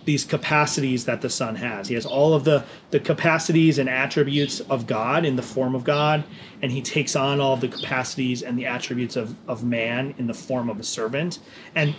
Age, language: 30-49, English